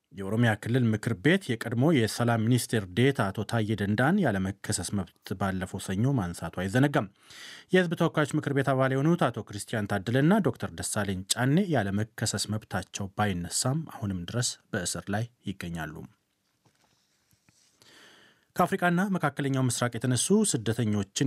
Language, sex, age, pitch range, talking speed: Amharic, male, 30-49, 100-140 Hz, 125 wpm